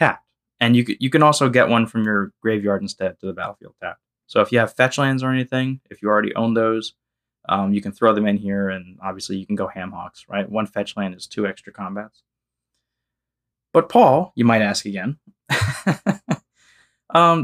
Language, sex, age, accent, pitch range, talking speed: English, male, 20-39, American, 110-165 Hz, 195 wpm